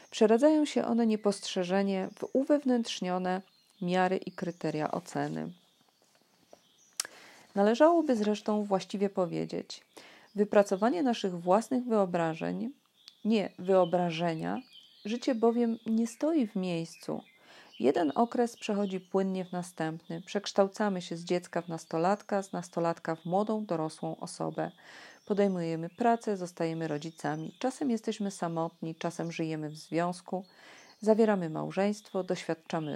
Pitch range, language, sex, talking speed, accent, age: 170-225 Hz, Polish, female, 105 wpm, native, 40-59